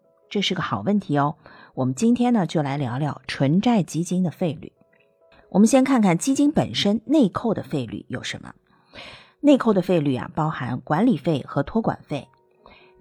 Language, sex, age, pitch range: Chinese, female, 50-69, 140-215 Hz